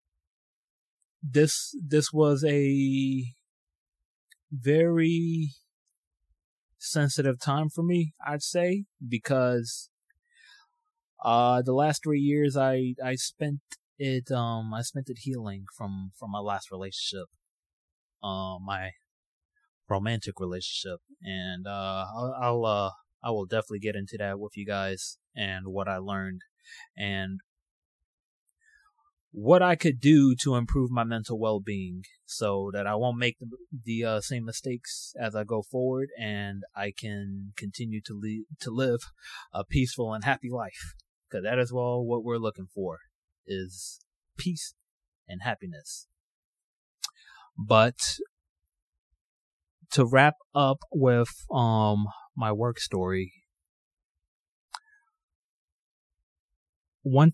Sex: male